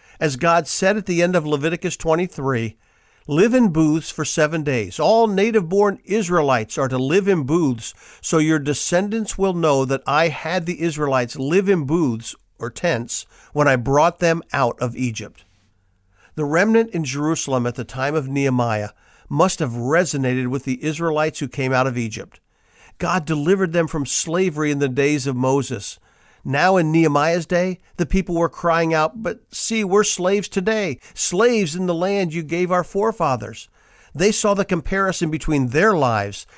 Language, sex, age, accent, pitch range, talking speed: English, male, 50-69, American, 135-180 Hz, 170 wpm